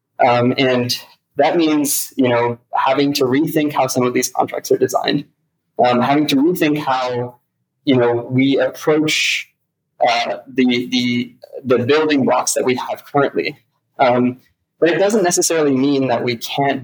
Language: English